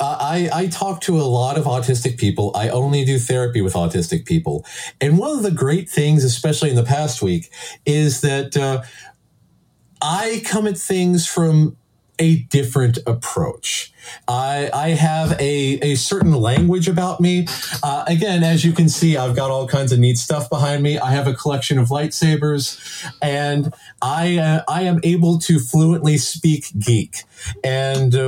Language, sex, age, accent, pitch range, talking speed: English, male, 40-59, American, 130-160 Hz, 170 wpm